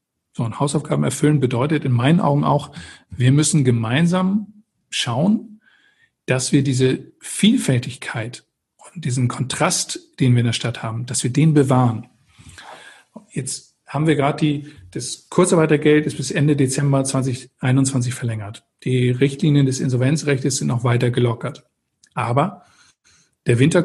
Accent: German